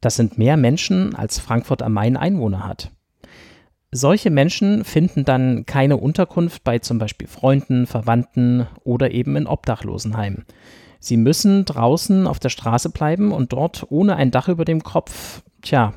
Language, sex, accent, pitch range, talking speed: German, male, German, 115-150 Hz, 155 wpm